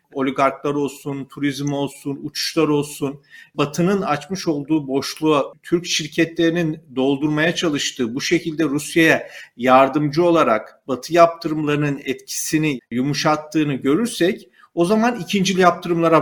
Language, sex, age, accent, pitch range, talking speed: Turkish, male, 40-59, native, 145-185 Hz, 105 wpm